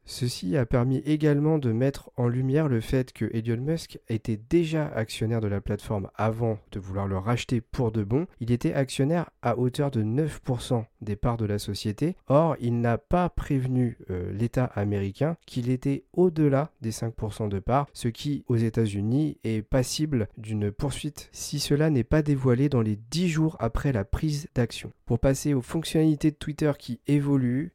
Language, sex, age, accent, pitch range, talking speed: French, male, 40-59, French, 110-145 Hz, 180 wpm